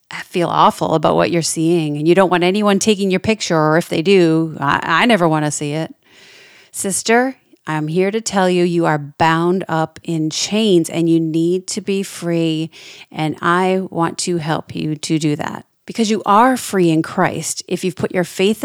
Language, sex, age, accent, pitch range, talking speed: English, female, 30-49, American, 165-205 Hz, 205 wpm